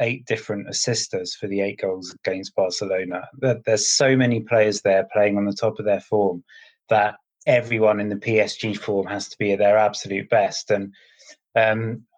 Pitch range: 100-115 Hz